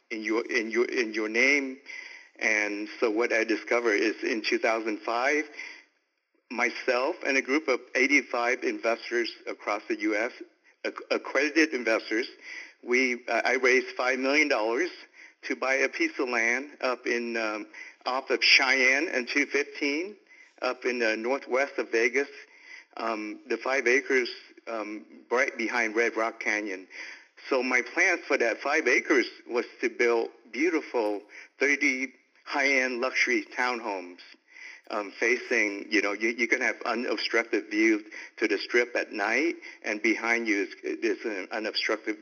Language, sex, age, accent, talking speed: English, male, 60-79, American, 145 wpm